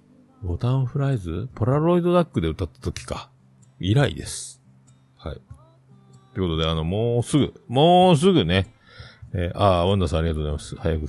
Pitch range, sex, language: 80-130 Hz, male, Japanese